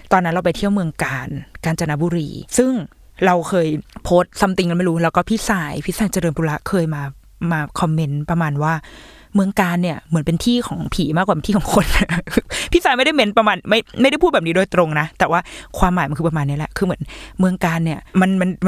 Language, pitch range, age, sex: Thai, 160-205 Hz, 20-39, female